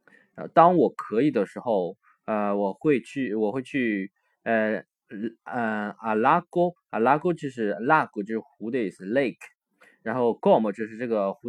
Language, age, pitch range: Chinese, 20-39, 105-150 Hz